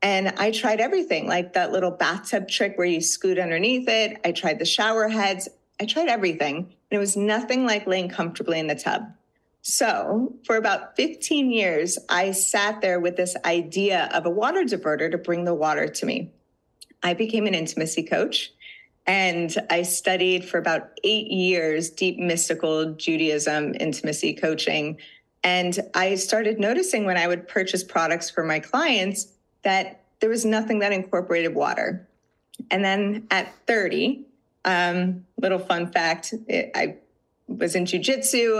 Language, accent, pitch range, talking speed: English, American, 170-215 Hz, 155 wpm